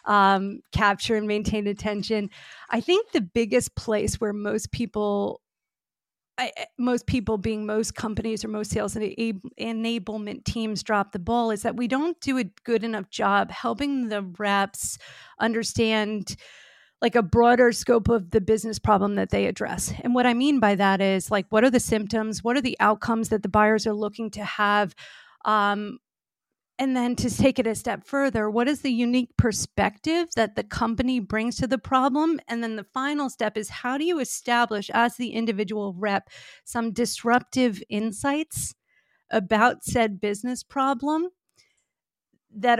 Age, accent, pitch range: 40-59, American, 205-245 Hz